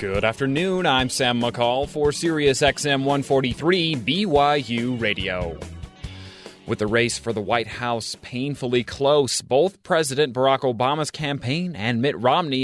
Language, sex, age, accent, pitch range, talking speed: English, male, 30-49, American, 115-145 Hz, 135 wpm